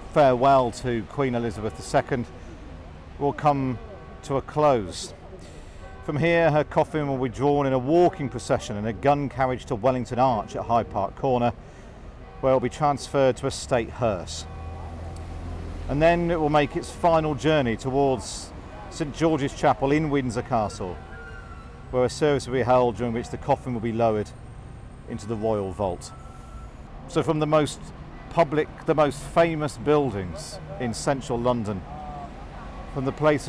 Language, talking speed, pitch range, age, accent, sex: English, 160 wpm, 110-145 Hz, 50-69, British, male